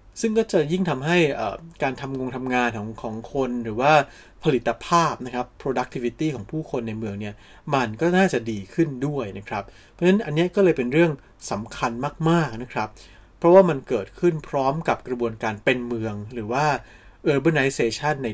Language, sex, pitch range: Thai, male, 115-160 Hz